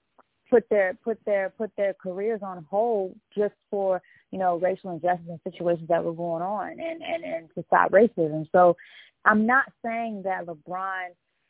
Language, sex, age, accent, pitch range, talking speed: English, female, 20-39, American, 160-195 Hz, 175 wpm